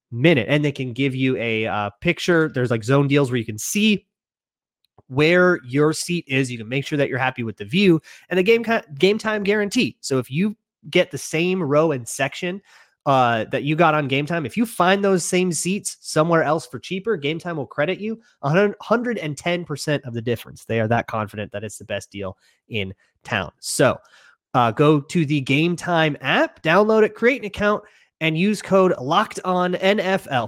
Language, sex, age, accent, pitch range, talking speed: English, male, 30-49, American, 125-180 Hz, 200 wpm